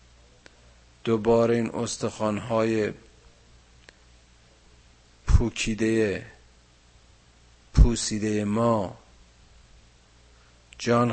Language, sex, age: Persian, male, 50-69